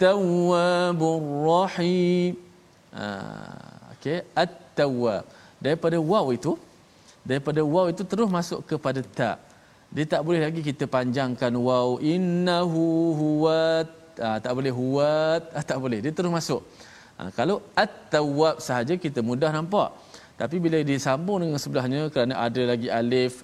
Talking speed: 140 wpm